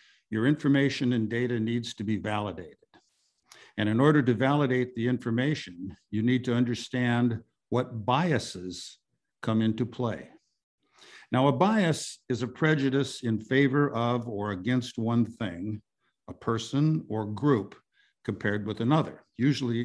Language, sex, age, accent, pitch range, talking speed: English, male, 60-79, American, 110-135 Hz, 135 wpm